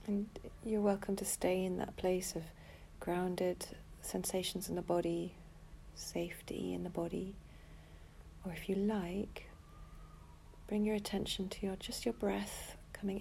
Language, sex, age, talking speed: English, female, 40-59, 140 wpm